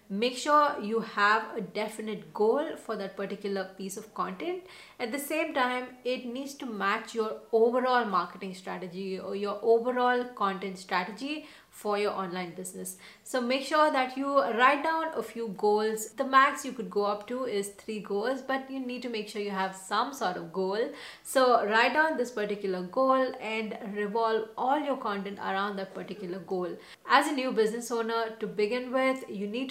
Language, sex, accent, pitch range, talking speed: English, female, Indian, 200-250 Hz, 185 wpm